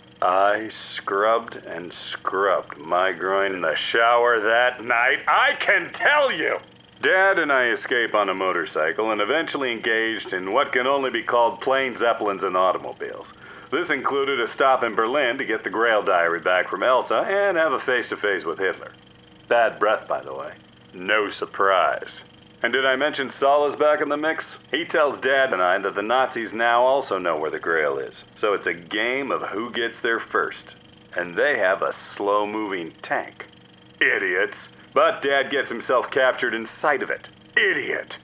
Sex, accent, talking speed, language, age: male, American, 175 wpm, English, 40-59